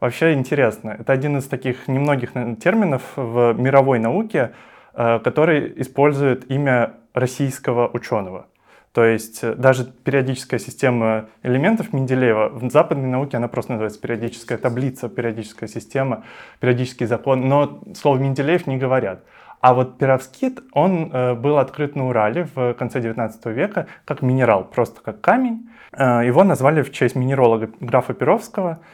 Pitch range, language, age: 120-155 Hz, Russian, 20-39